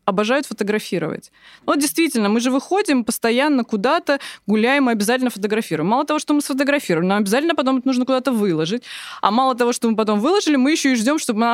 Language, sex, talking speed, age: Russian, female, 190 wpm, 20-39